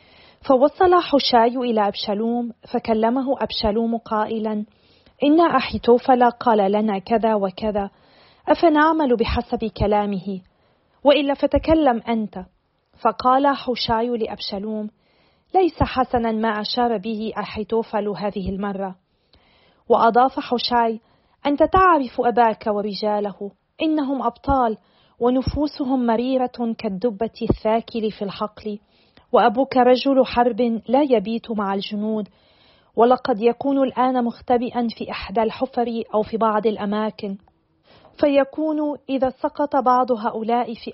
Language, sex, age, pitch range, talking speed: Arabic, female, 40-59, 215-255 Hz, 100 wpm